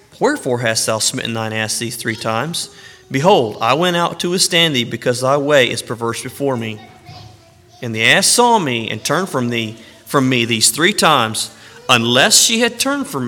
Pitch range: 110-135 Hz